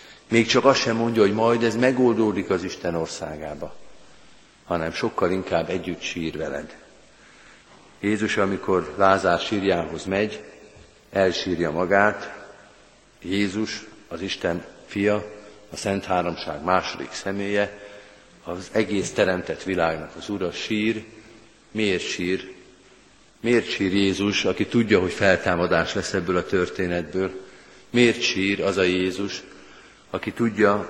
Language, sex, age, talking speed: Hungarian, male, 50-69, 120 wpm